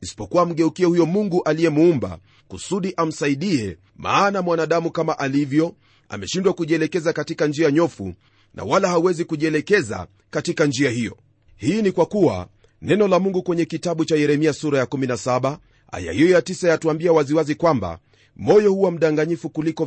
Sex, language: male, Swahili